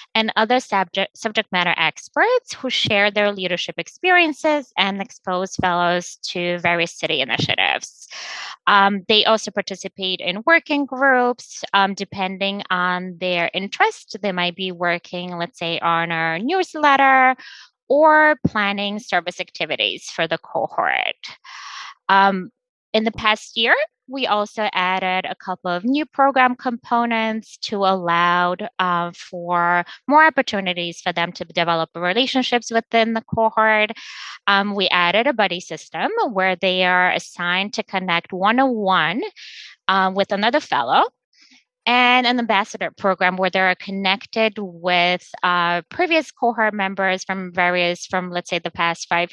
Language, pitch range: English, 180-240 Hz